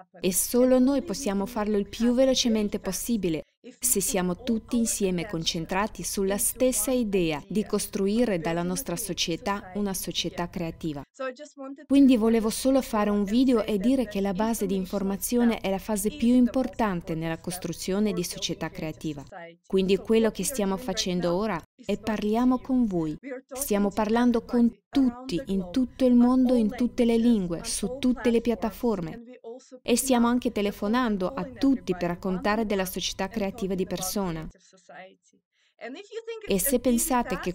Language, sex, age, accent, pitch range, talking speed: Italian, female, 20-39, native, 185-240 Hz, 145 wpm